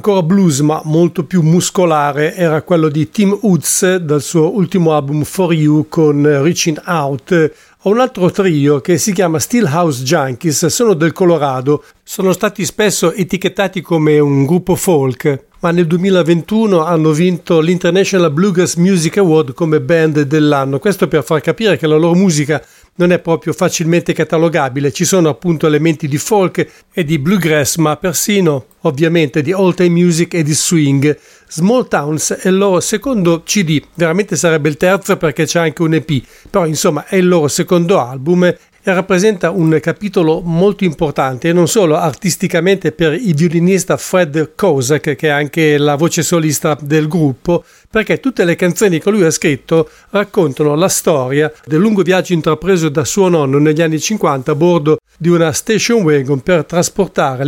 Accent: Italian